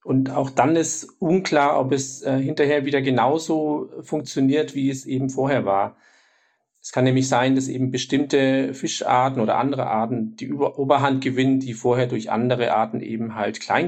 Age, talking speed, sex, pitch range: 40-59, 170 wpm, male, 125-145 Hz